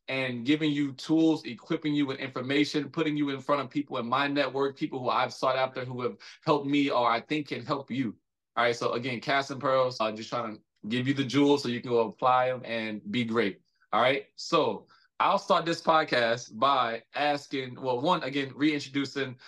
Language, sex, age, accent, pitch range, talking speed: English, male, 20-39, American, 120-150 Hz, 215 wpm